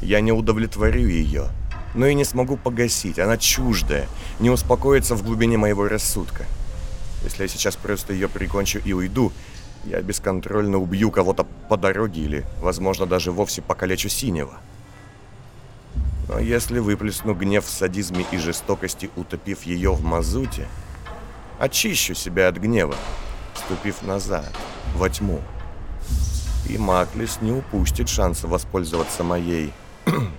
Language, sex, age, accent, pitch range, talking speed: Russian, male, 30-49, native, 85-110 Hz, 125 wpm